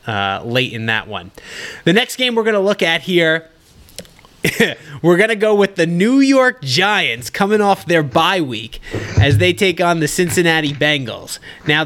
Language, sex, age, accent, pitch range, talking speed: English, male, 30-49, American, 140-200 Hz, 170 wpm